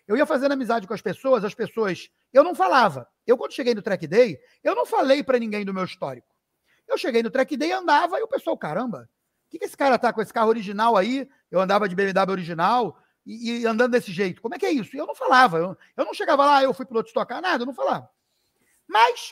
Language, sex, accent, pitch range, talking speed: Portuguese, male, Brazilian, 205-290 Hz, 255 wpm